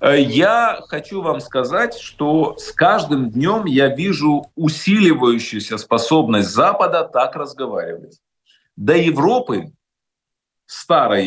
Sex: male